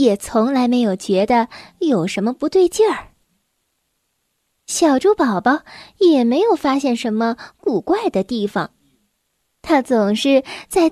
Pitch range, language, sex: 225-335 Hz, Chinese, female